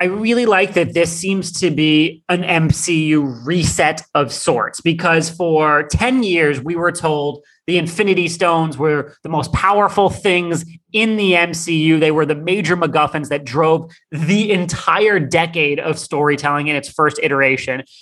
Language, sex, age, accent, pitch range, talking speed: English, male, 30-49, American, 155-205 Hz, 155 wpm